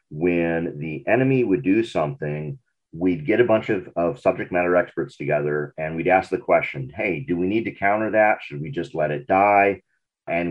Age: 40-59